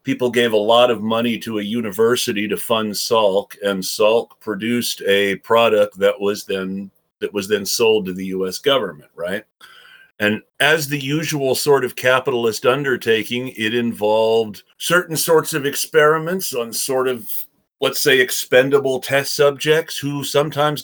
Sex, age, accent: male, 40-59, American